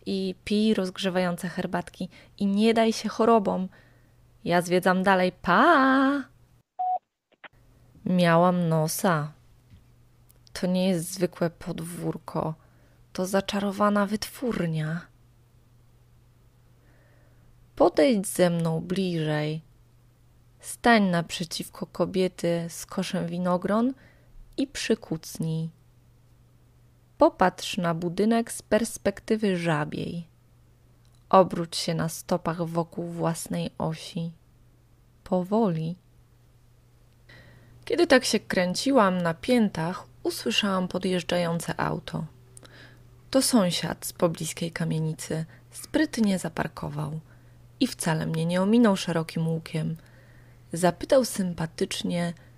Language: Polish